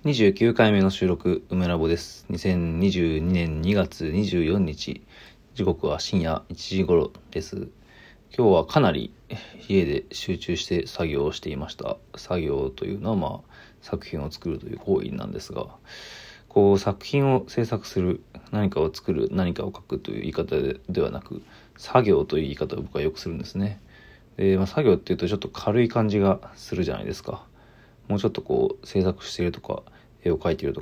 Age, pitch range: 40-59, 90-110 Hz